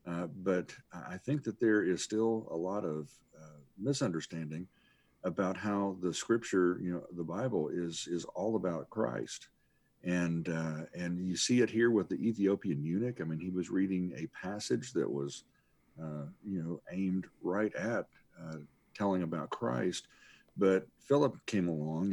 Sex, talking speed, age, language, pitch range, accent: male, 165 wpm, 50-69, English, 80-105 Hz, American